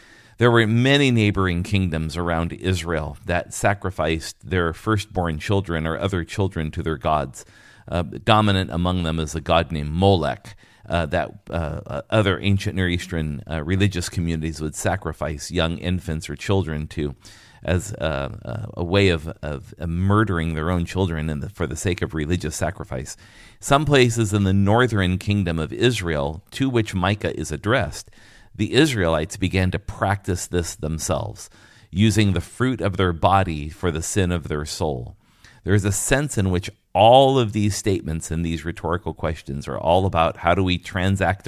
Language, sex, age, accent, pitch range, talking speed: English, male, 40-59, American, 80-105 Hz, 165 wpm